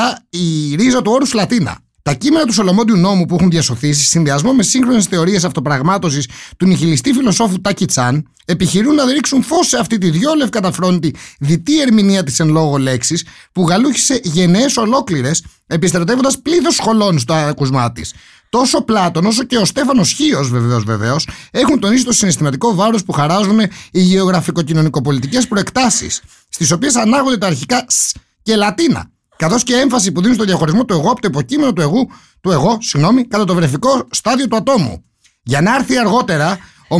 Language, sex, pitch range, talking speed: Greek, male, 170-245 Hz, 170 wpm